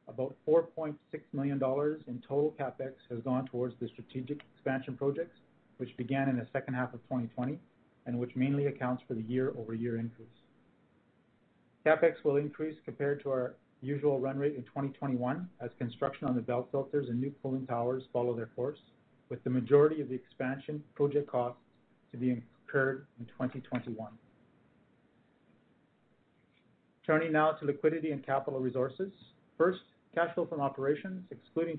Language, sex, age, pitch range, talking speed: English, male, 40-59, 125-145 Hz, 150 wpm